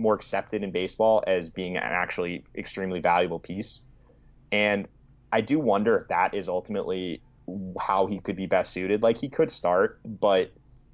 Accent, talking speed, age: American, 165 wpm, 30-49